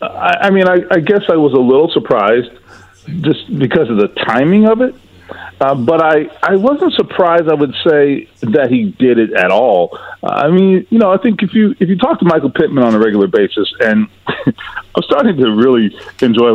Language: English